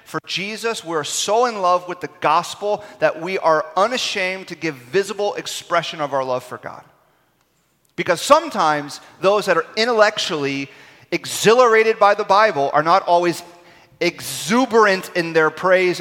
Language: English